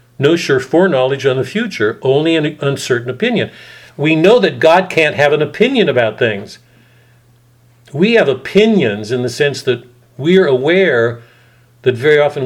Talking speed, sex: 160 wpm, male